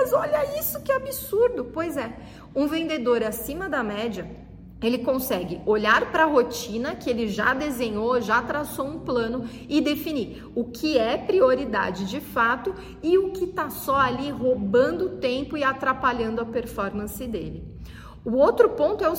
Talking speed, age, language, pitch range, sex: 165 wpm, 40-59, Portuguese, 240-310 Hz, female